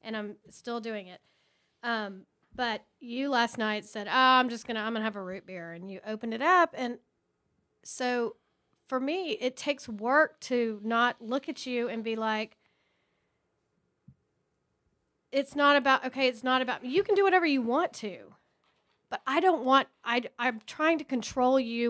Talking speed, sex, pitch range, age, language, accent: 185 wpm, female, 215-265 Hz, 40-59, English, American